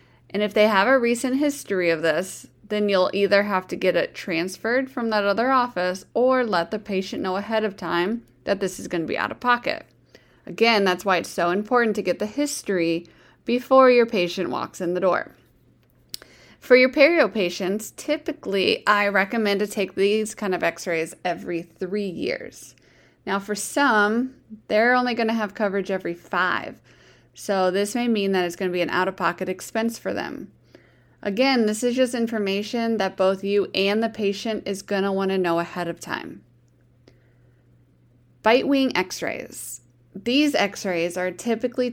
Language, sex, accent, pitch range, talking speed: English, female, American, 180-225 Hz, 170 wpm